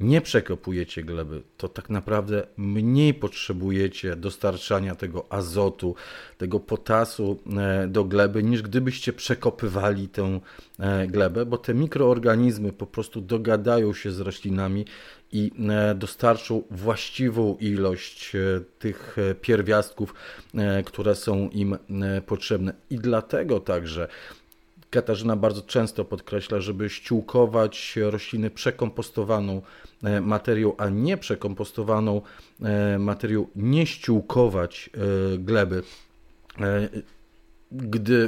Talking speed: 95 wpm